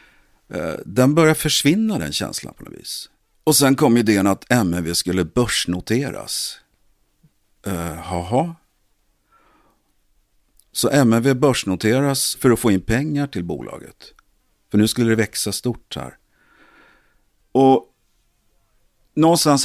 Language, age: English, 50-69